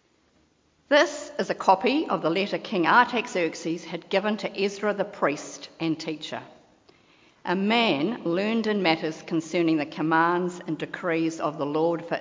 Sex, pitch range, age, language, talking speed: female, 160-215 Hz, 50-69, English, 150 wpm